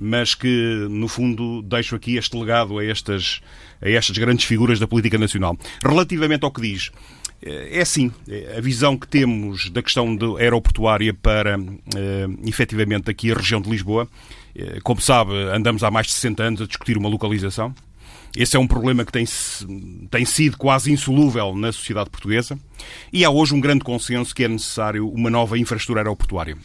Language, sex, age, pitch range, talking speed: Portuguese, male, 40-59, 105-135 Hz, 170 wpm